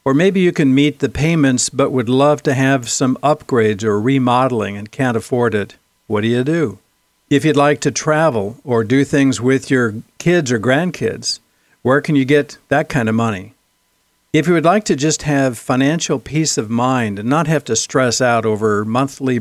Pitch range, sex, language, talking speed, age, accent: 115-150 Hz, male, English, 200 wpm, 60-79, American